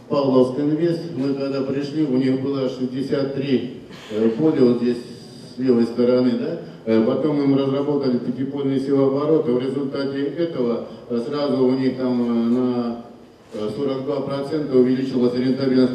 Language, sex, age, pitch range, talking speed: Russian, male, 50-69, 120-135 Hz, 125 wpm